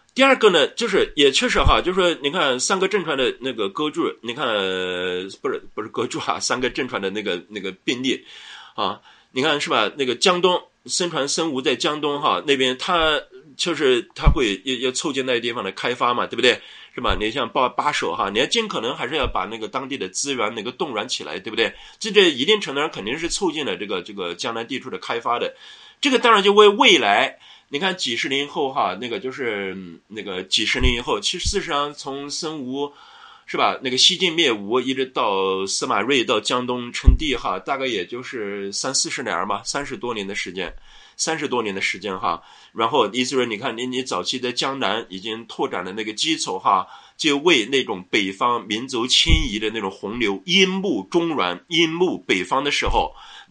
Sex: male